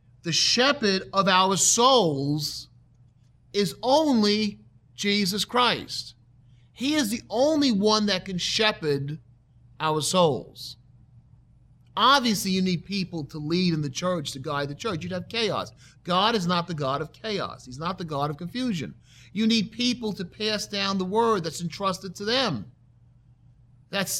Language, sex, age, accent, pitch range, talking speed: English, male, 40-59, American, 125-200 Hz, 150 wpm